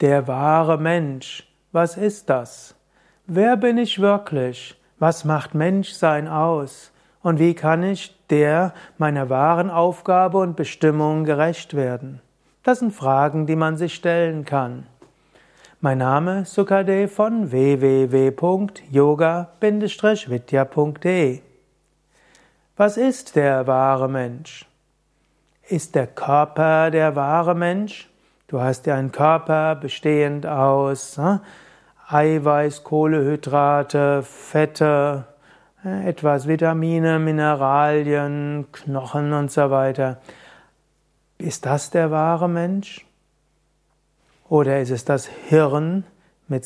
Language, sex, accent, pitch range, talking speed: German, male, German, 140-175 Hz, 105 wpm